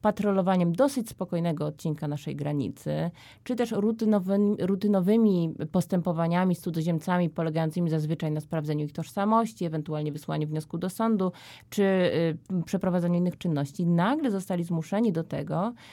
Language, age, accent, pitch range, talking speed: Polish, 20-39, native, 160-200 Hz, 125 wpm